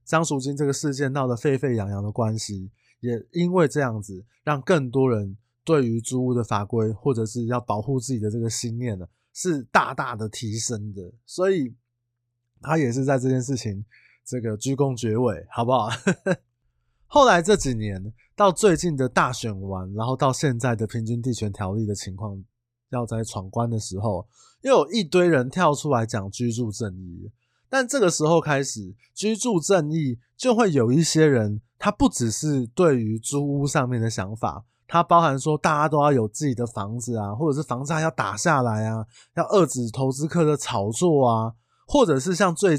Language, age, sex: Chinese, 20-39, male